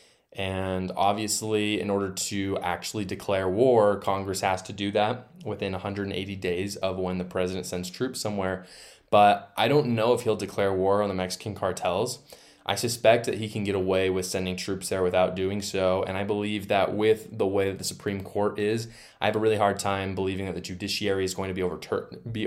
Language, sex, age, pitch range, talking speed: English, male, 20-39, 90-100 Hz, 205 wpm